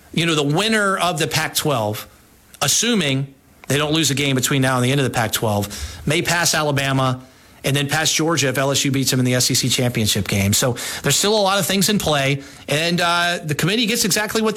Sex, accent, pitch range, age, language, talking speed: male, American, 130-195 Hz, 40-59, English, 220 wpm